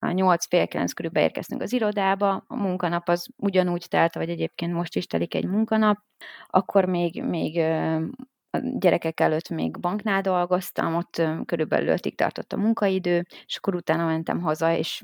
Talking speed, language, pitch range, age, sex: 150 wpm, Hungarian, 160-195 Hz, 30-49, female